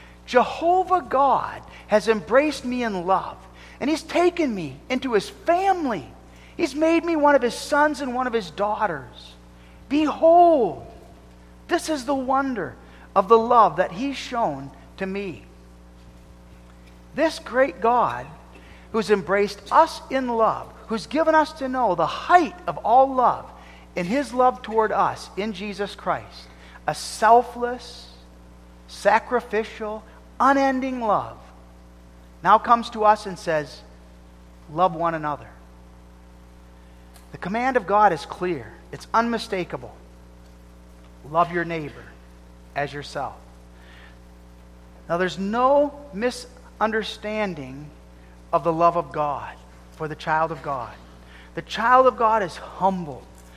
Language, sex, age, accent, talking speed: English, male, 40-59, American, 125 wpm